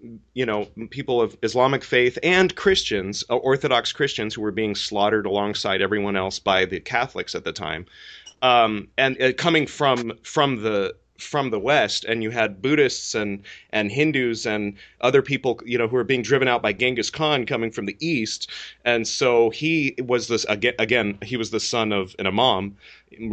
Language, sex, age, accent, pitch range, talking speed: English, male, 30-49, American, 105-135 Hz, 185 wpm